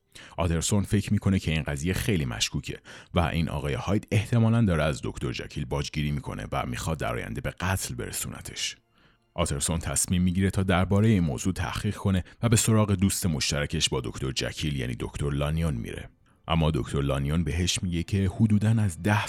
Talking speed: 175 wpm